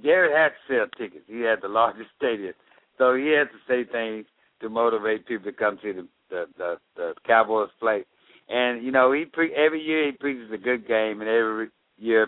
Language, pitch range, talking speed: English, 115-140 Hz, 210 wpm